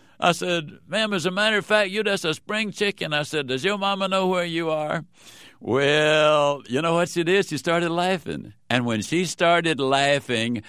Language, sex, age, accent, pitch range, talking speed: English, male, 60-79, American, 110-160 Hz, 200 wpm